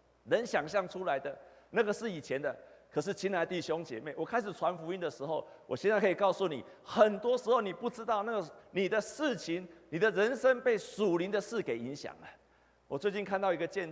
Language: Chinese